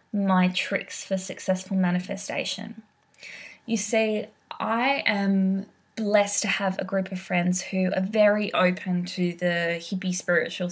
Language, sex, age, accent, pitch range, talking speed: English, female, 20-39, Australian, 195-255 Hz, 135 wpm